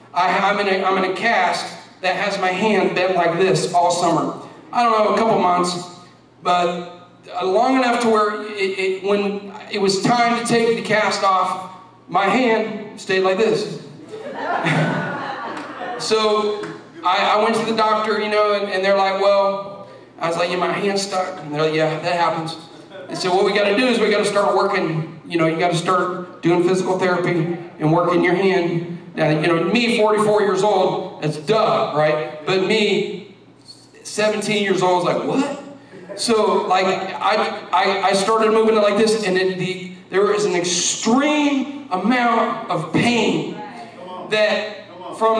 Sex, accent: male, American